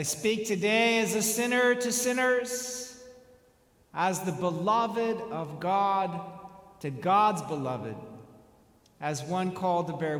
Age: 50-69